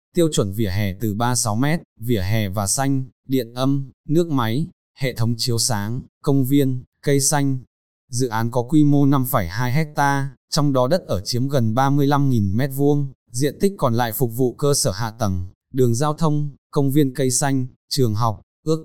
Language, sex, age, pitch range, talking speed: Vietnamese, male, 20-39, 115-145 Hz, 185 wpm